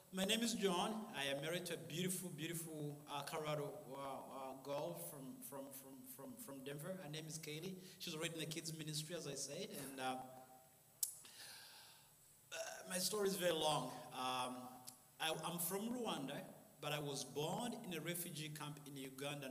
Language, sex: English, male